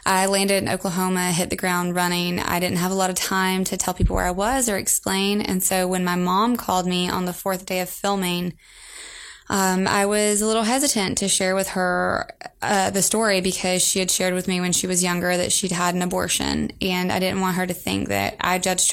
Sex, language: female, English